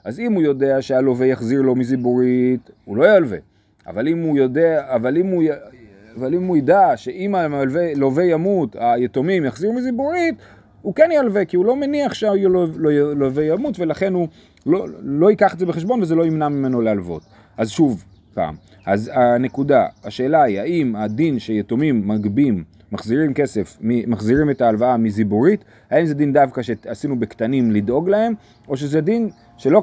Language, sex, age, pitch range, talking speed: Hebrew, male, 30-49, 115-170 Hz, 155 wpm